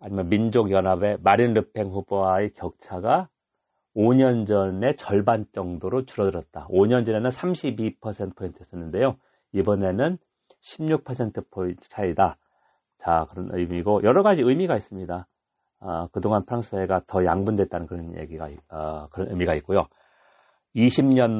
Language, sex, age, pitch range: Korean, male, 40-59, 90-125 Hz